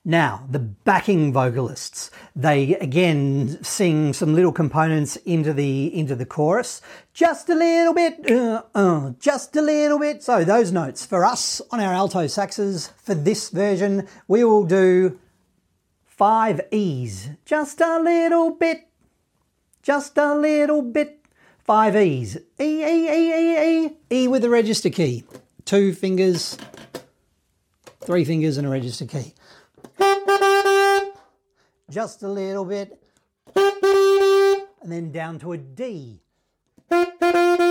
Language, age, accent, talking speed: English, 40-59, Australian, 125 wpm